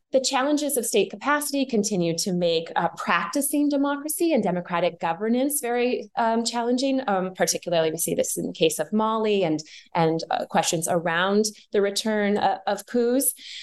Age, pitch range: 20-39, 175-255 Hz